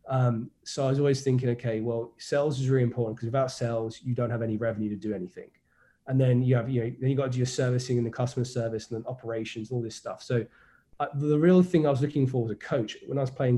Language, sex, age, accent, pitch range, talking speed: English, male, 20-39, British, 115-135 Hz, 265 wpm